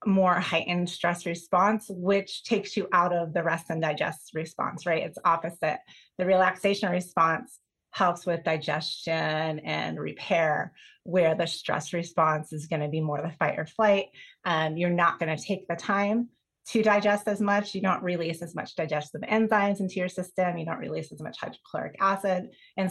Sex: female